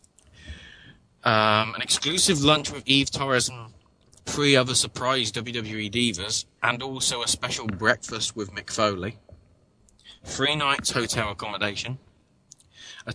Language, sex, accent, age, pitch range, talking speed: English, male, British, 20-39, 100-125 Hz, 120 wpm